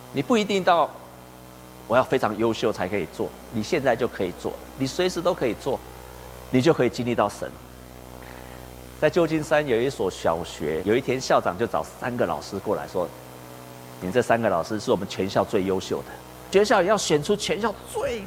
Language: Chinese